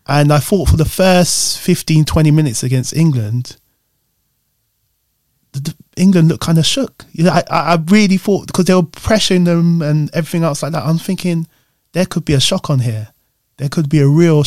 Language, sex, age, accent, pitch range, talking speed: English, male, 20-39, British, 125-150 Hz, 180 wpm